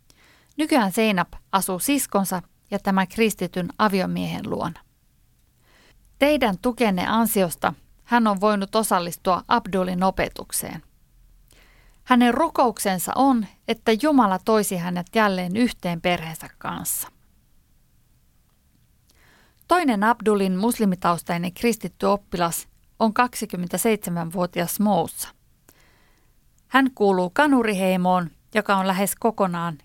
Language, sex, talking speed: Finnish, female, 90 wpm